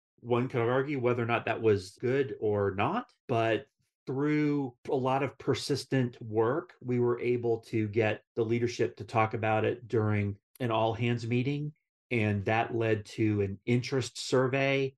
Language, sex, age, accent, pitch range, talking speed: English, male, 40-59, American, 110-145 Hz, 160 wpm